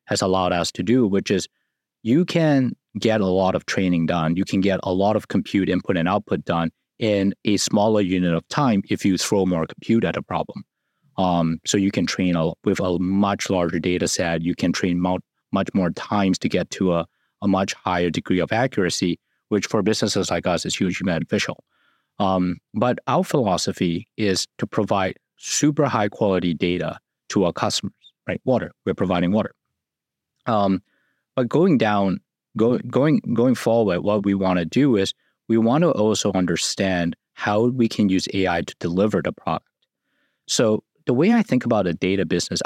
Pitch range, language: 90-115 Hz, English